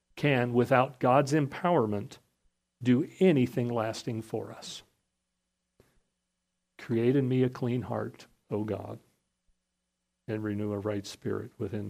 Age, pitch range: 50-69, 110-150 Hz